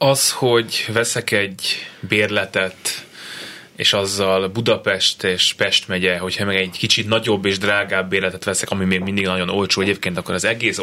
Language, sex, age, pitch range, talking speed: Hungarian, male, 20-39, 95-110 Hz, 160 wpm